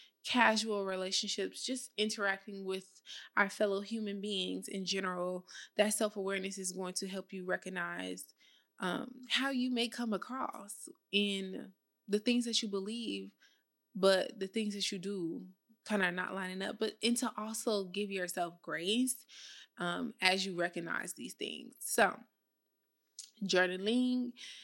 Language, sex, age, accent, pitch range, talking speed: English, female, 20-39, American, 185-220 Hz, 140 wpm